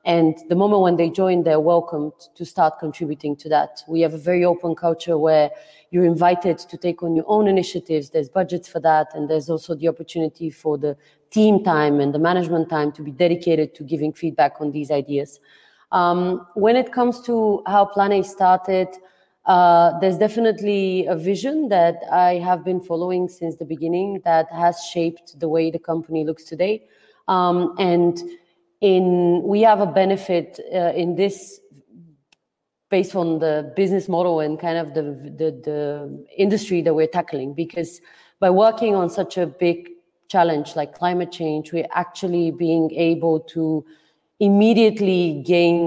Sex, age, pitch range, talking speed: female, 30-49, 160-185 Hz, 165 wpm